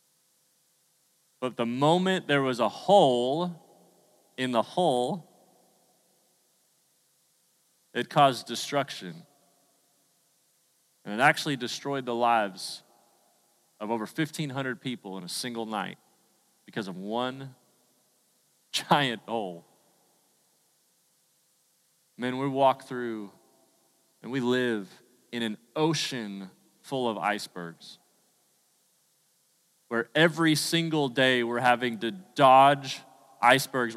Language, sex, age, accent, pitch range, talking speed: English, male, 30-49, American, 125-175 Hz, 95 wpm